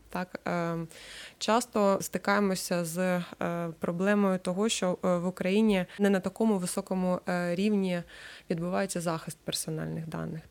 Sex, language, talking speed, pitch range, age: female, Ukrainian, 105 wpm, 170-200 Hz, 20-39